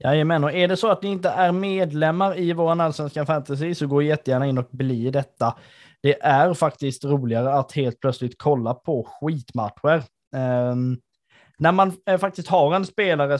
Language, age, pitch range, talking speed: Swedish, 20-39, 130-170 Hz, 190 wpm